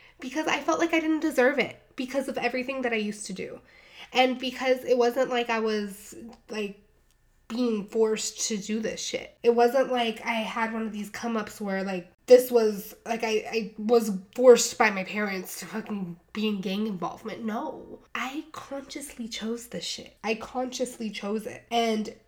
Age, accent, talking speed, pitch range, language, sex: 20-39, American, 185 wpm, 210-255 Hz, English, female